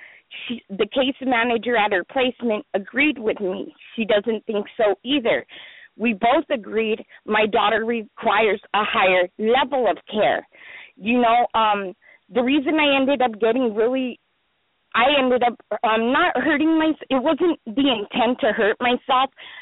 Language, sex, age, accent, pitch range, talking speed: English, female, 30-49, American, 210-260 Hz, 150 wpm